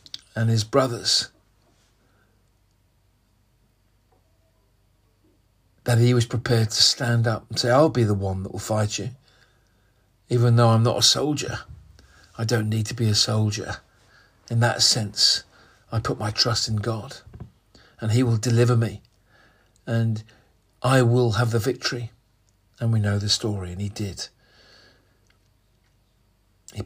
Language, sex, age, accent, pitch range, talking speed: English, male, 50-69, British, 105-120 Hz, 140 wpm